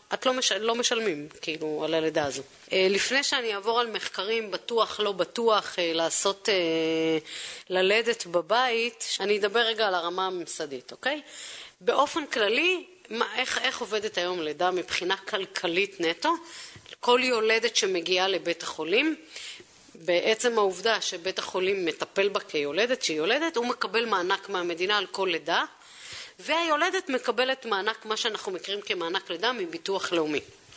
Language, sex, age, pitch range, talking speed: Hebrew, female, 30-49, 180-250 Hz, 135 wpm